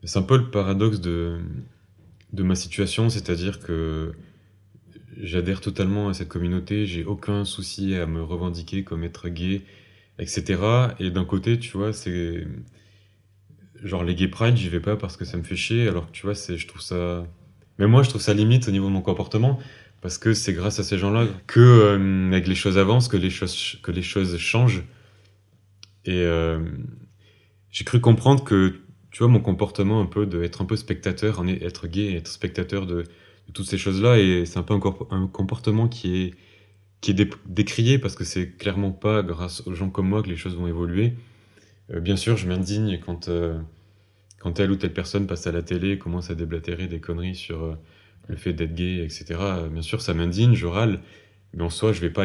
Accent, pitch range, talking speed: French, 90-105 Hz, 210 wpm